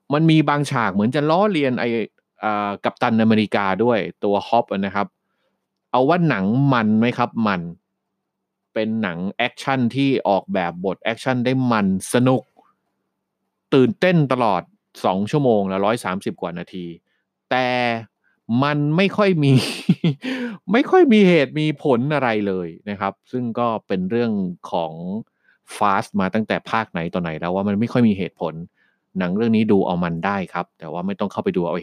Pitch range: 100-145 Hz